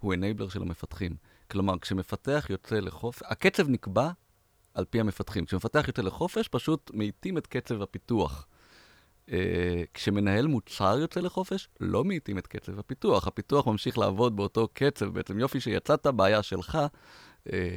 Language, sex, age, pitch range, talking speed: Hebrew, male, 30-49, 95-115 Hz, 135 wpm